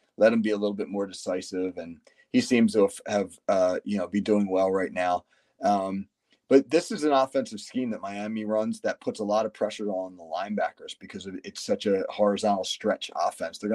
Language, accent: English, American